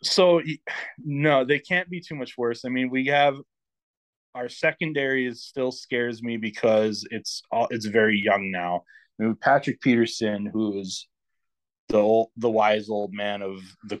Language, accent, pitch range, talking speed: English, American, 100-125 Hz, 165 wpm